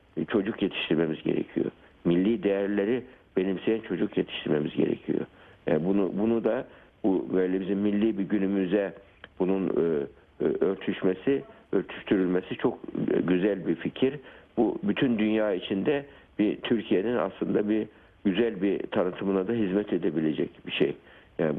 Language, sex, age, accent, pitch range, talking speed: Turkish, male, 60-79, native, 90-105 Hz, 130 wpm